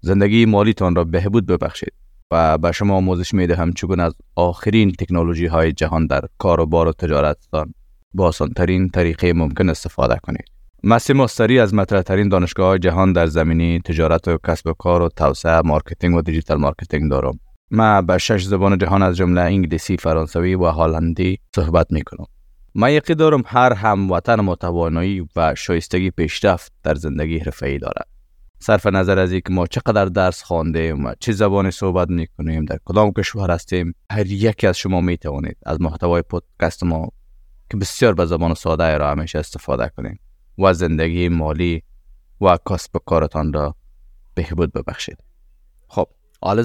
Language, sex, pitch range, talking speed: Persian, male, 80-100 Hz, 160 wpm